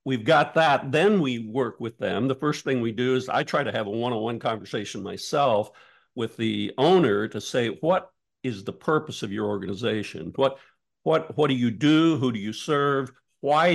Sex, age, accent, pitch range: male, 60-79, American, 115-145 Hz